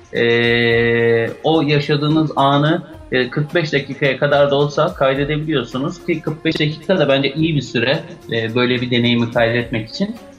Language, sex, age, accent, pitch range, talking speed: Turkish, male, 30-49, native, 135-155 Hz, 145 wpm